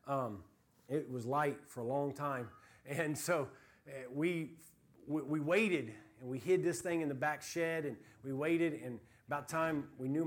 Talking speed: 185 wpm